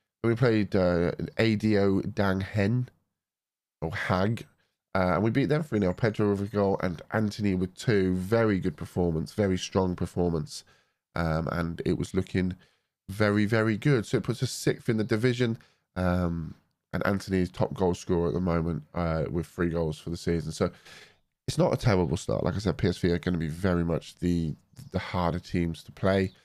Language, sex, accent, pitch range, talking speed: English, male, British, 90-105 Hz, 185 wpm